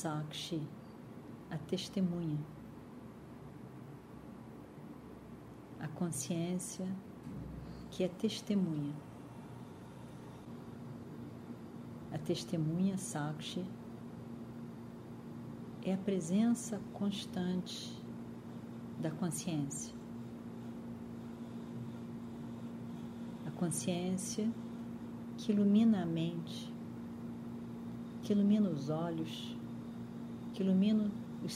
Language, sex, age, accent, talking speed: Portuguese, female, 40-59, Brazilian, 55 wpm